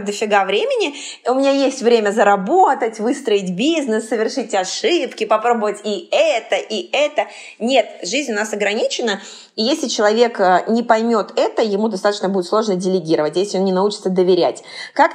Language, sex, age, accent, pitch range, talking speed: Russian, female, 20-39, native, 185-225 Hz, 150 wpm